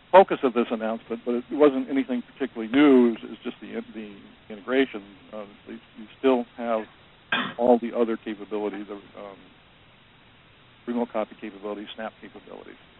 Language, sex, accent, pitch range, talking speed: English, male, American, 110-130 Hz, 145 wpm